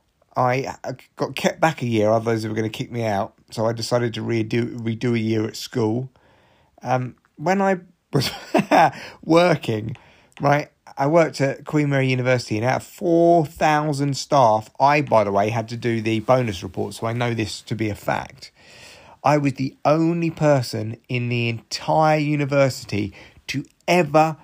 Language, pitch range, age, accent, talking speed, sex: English, 110-135 Hz, 30-49, British, 170 wpm, male